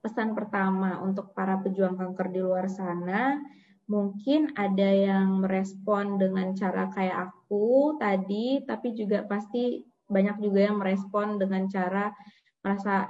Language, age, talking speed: Indonesian, 20-39, 130 wpm